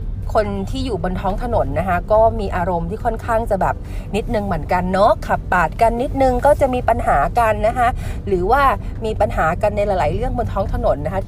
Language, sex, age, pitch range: Thai, female, 30-49, 175-245 Hz